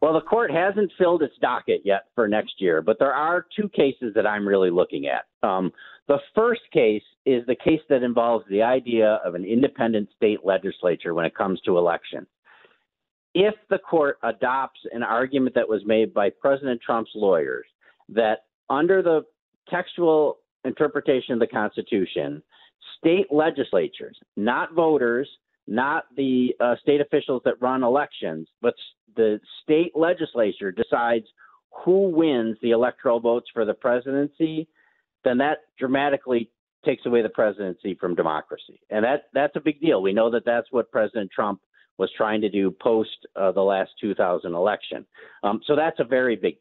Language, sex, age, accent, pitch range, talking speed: English, male, 50-69, American, 115-165 Hz, 160 wpm